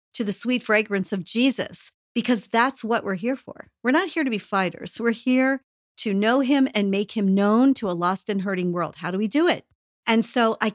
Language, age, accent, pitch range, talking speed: English, 40-59, American, 185-235 Hz, 230 wpm